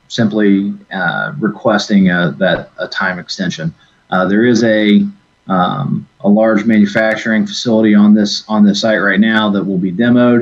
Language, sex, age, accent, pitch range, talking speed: English, male, 30-49, American, 100-130 Hz, 160 wpm